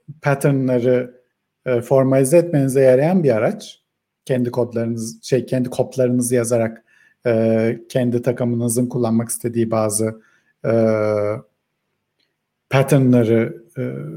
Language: Turkish